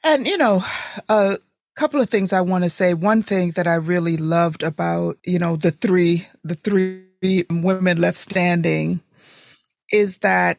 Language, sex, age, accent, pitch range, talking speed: English, female, 40-59, American, 180-215 Hz, 165 wpm